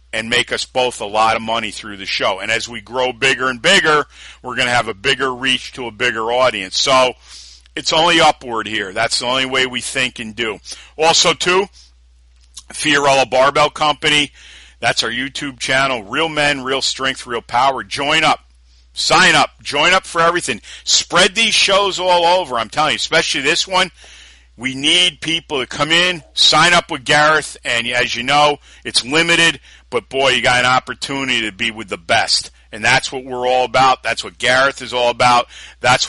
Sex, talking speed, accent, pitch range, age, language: male, 195 wpm, American, 115-145 Hz, 50-69, English